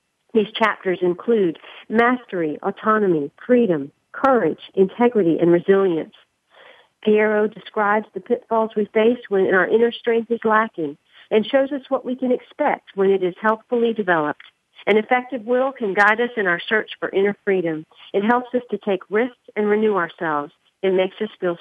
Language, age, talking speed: English, 50-69, 165 wpm